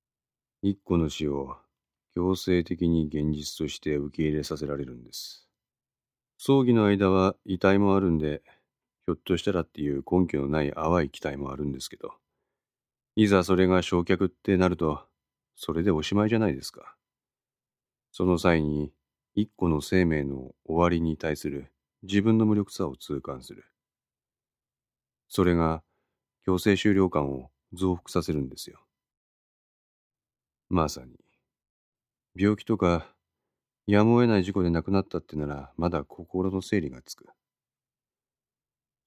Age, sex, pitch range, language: 40-59, male, 75-100 Hz, Japanese